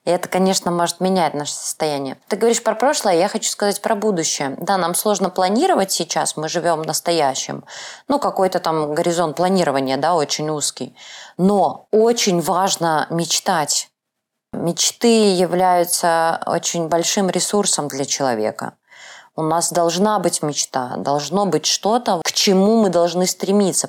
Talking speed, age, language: 145 wpm, 20-39, Russian